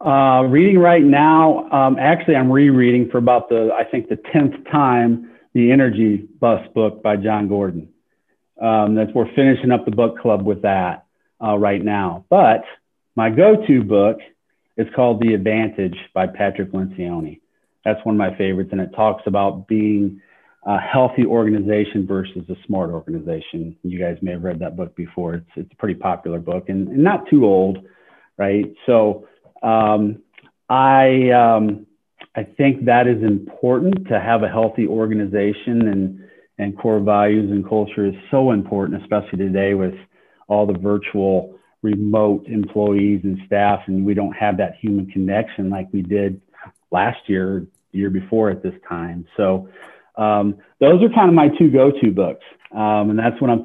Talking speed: 165 wpm